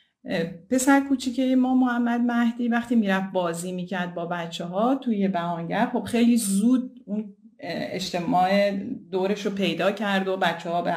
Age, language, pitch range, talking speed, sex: 30-49, Persian, 180-240 Hz, 160 wpm, female